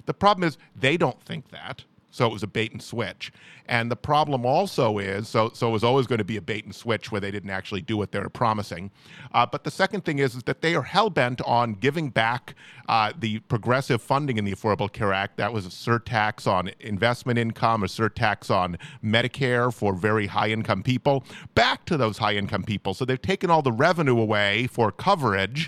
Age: 40-59